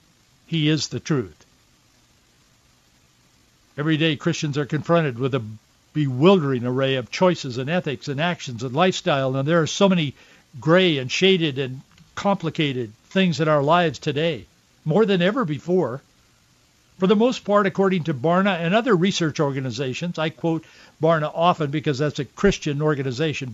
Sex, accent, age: male, American, 60-79